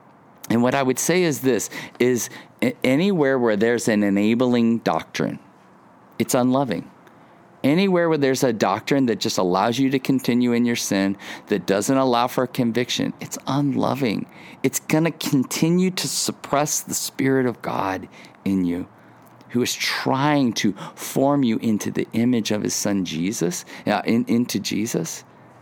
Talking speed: 155 wpm